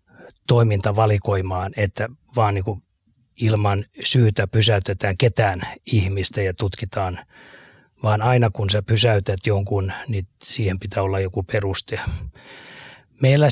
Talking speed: 105 wpm